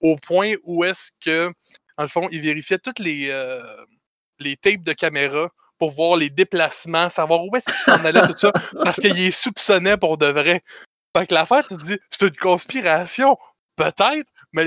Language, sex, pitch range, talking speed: French, male, 155-205 Hz, 190 wpm